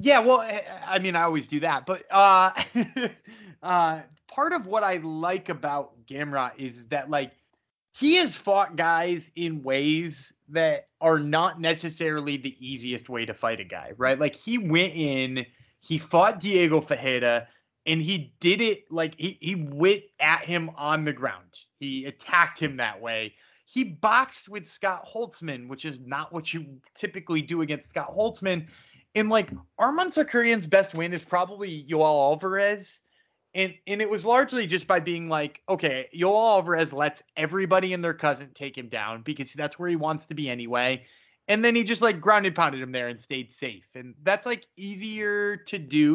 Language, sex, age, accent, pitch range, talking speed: English, male, 30-49, American, 145-195 Hz, 175 wpm